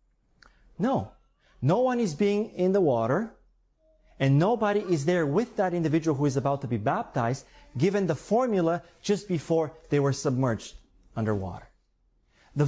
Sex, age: male, 30-49